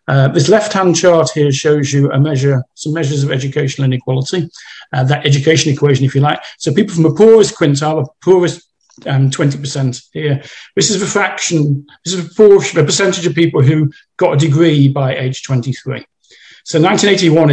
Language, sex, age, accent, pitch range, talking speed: English, male, 50-69, British, 130-165 Hz, 175 wpm